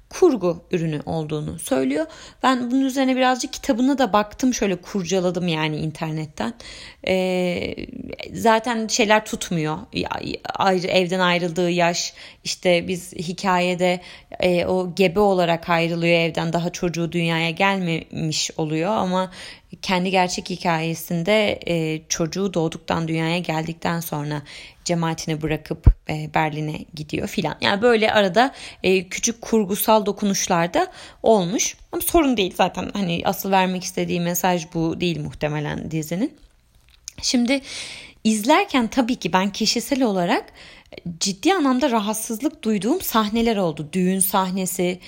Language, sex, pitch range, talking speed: Turkish, female, 170-220 Hz, 115 wpm